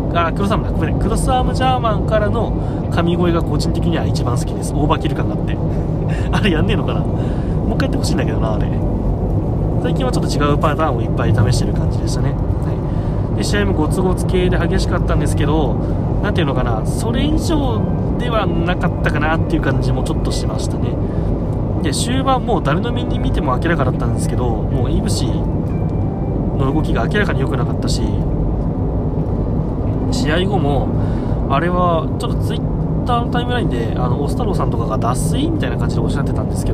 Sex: male